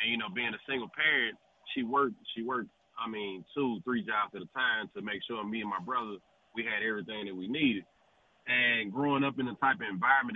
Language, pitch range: English, 110-145 Hz